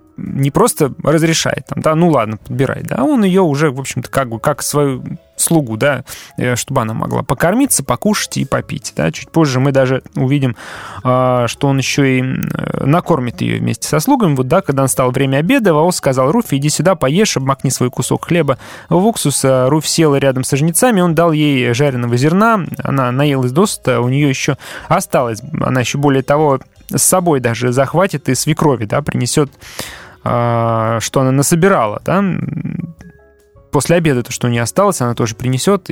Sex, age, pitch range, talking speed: male, 20-39, 125-165 Hz, 170 wpm